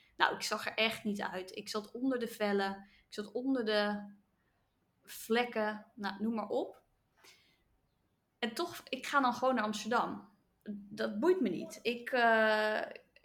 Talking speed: 160 wpm